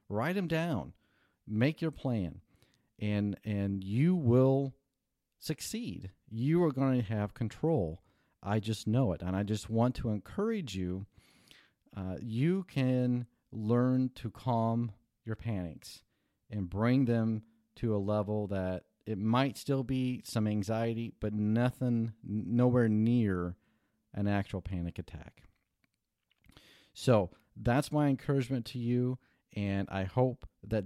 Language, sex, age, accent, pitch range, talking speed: English, male, 40-59, American, 100-125 Hz, 130 wpm